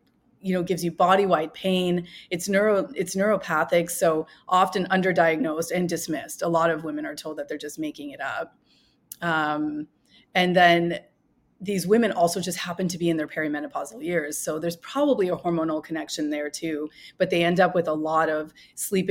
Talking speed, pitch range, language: 180 wpm, 160-185 Hz, English